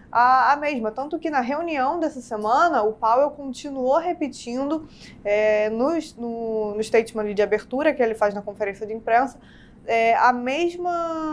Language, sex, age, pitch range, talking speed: Portuguese, female, 20-39, 210-265 Hz, 145 wpm